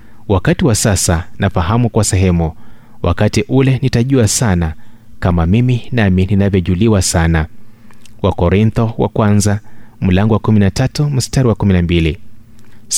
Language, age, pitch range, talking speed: Swahili, 30-49, 95-120 Hz, 110 wpm